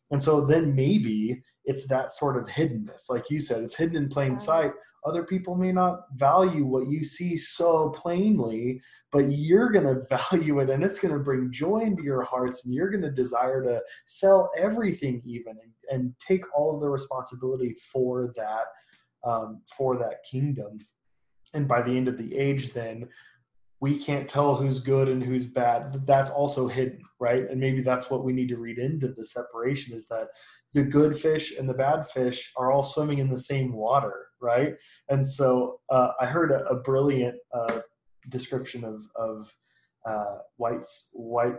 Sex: male